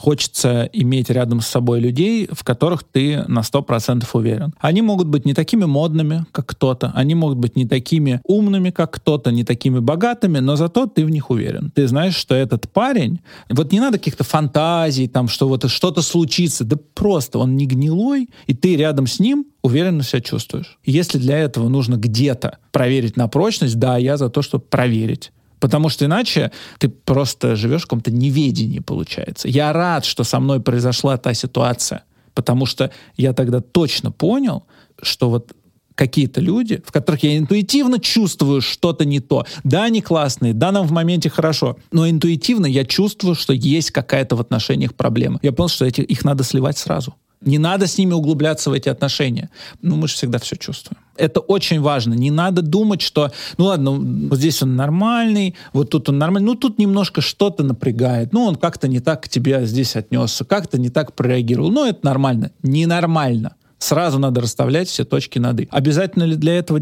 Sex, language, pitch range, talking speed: male, Russian, 130-170 Hz, 185 wpm